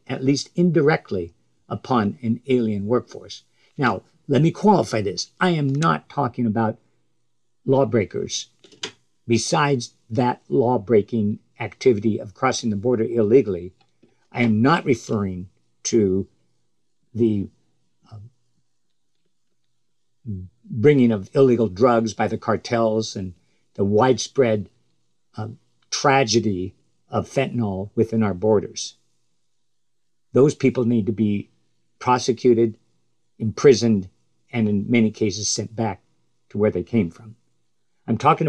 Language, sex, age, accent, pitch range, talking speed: English, male, 50-69, American, 105-130 Hz, 110 wpm